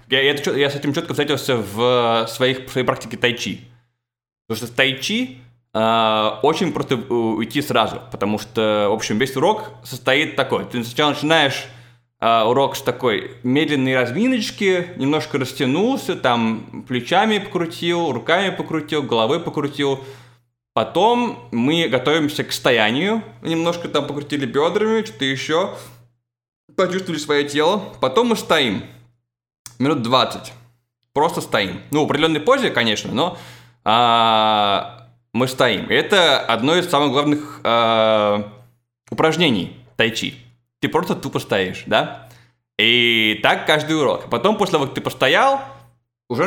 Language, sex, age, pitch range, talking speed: Russian, male, 20-39, 115-150 Hz, 130 wpm